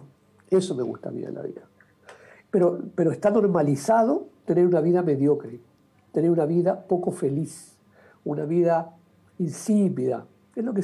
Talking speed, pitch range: 150 wpm, 140-225 Hz